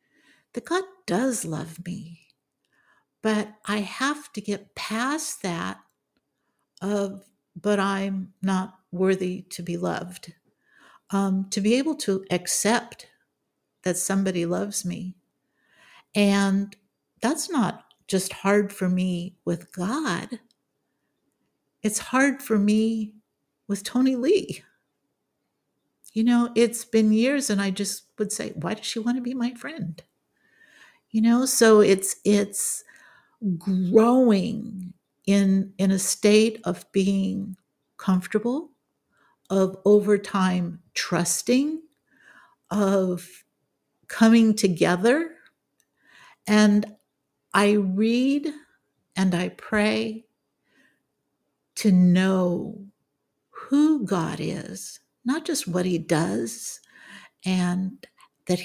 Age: 60-79